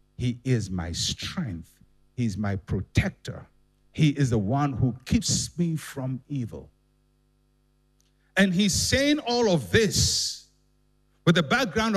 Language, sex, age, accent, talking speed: English, male, 60-79, Nigerian, 130 wpm